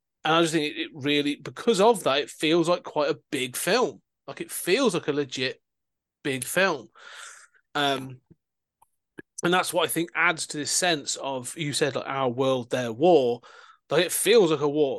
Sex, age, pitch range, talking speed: male, 30-49, 135-175 Hz, 190 wpm